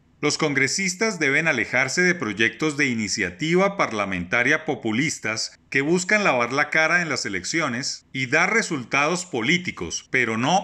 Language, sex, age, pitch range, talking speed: Spanish, male, 30-49, 115-165 Hz, 135 wpm